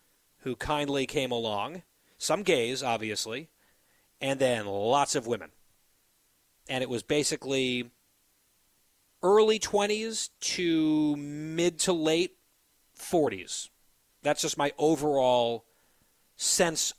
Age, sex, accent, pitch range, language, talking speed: 30-49, male, American, 120-155 Hz, English, 100 wpm